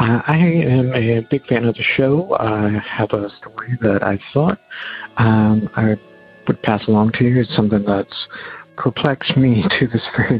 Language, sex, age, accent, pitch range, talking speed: English, male, 50-69, American, 100-125 Hz, 175 wpm